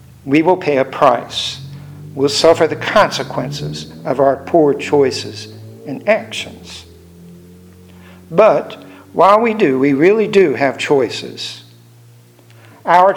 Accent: American